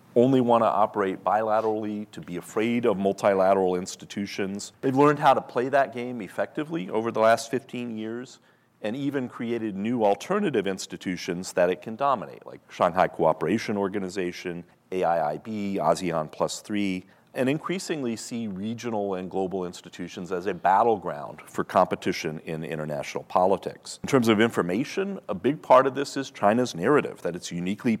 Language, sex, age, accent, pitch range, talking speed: English, male, 40-59, American, 90-125 Hz, 155 wpm